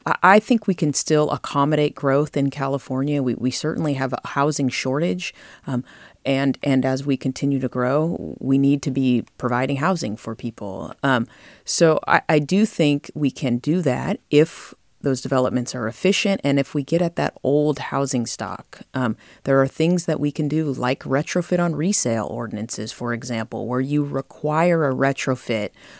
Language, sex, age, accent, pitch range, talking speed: English, female, 30-49, American, 125-155 Hz, 175 wpm